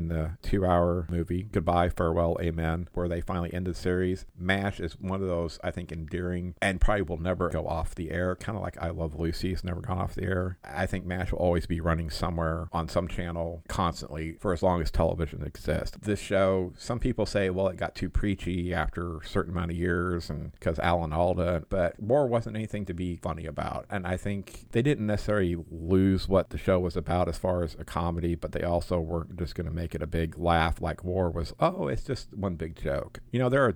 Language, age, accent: English, 50-69, American